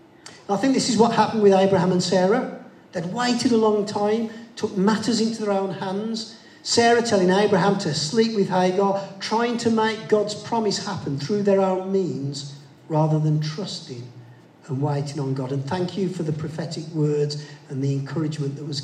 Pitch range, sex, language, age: 145-215 Hz, male, English, 40-59